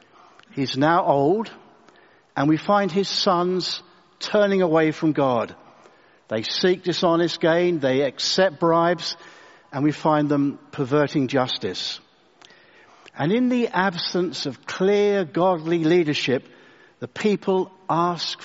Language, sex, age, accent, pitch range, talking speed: English, male, 60-79, British, 155-190 Hz, 115 wpm